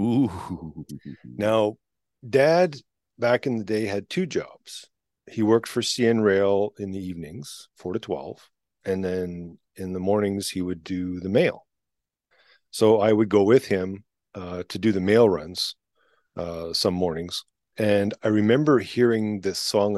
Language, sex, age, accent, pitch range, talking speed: English, male, 40-59, American, 95-115 Hz, 155 wpm